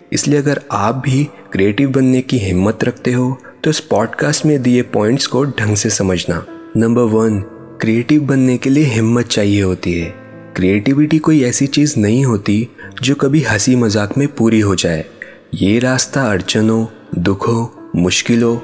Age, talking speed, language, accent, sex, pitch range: 20-39, 160 wpm, Hindi, native, male, 105-130 Hz